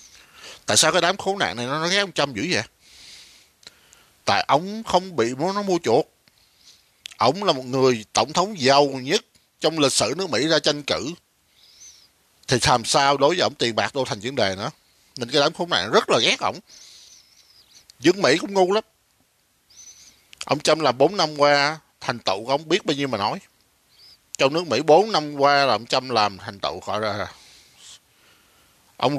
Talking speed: 195 wpm